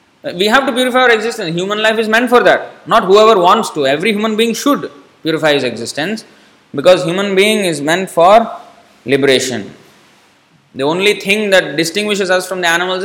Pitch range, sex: 135-205 Hz, male